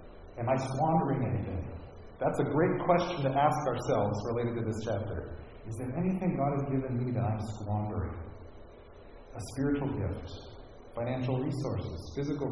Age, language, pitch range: 40-59, English, 110-145 Hz